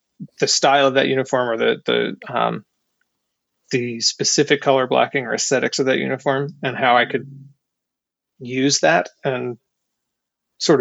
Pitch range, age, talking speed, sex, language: 130-155 Hz, 30-49, 145 wpm, male, English